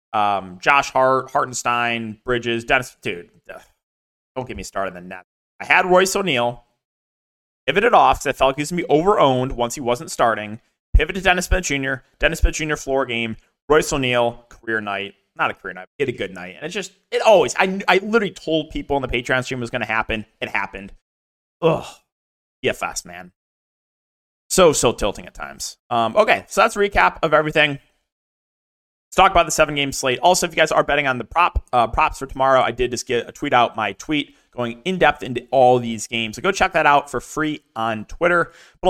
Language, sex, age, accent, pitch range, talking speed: English, male, 20-39, American, 120-160 Hz, 215 wpm